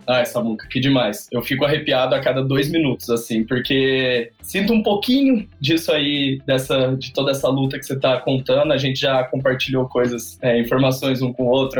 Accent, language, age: Brazilian, Portuguese, 20-39